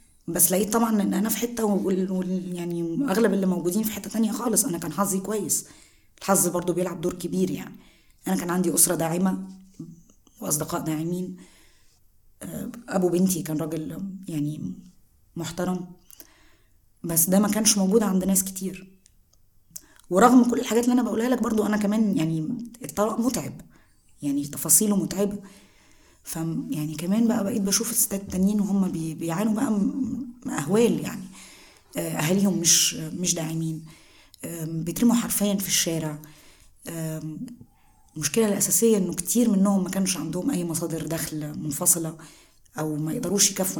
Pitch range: 165-205 Hz